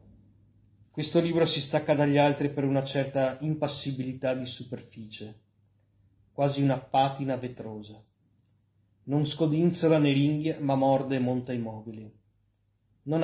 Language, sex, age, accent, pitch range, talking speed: Italian, male, 30-49, native, 110-140 Hz, 120 wpm